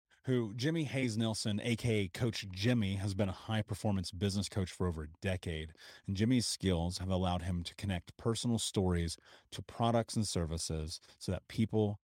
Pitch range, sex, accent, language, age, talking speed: 90-110 Hz, male, American, English, 30-49, 170 wpm